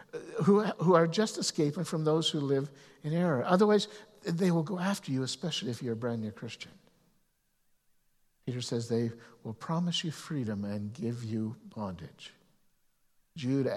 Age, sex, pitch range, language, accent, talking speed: 60-79, male, 110-150 Hz, English, American, 150 wpm